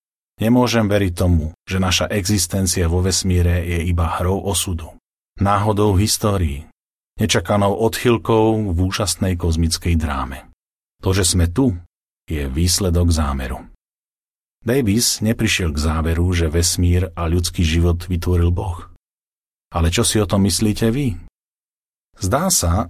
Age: 40-59